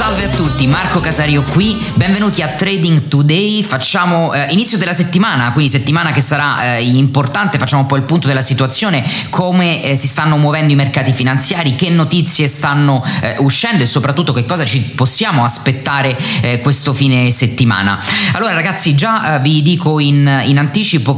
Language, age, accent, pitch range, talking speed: Italian, 20-39, native, 135-165 Hz, 175 wpm